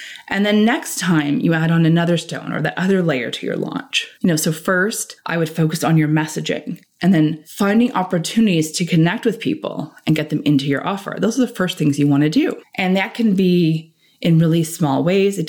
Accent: American